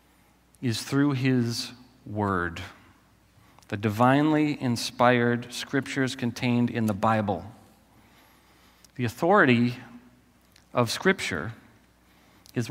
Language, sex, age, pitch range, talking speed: English, male, 40-59, 105-140 Hz, 80 wpm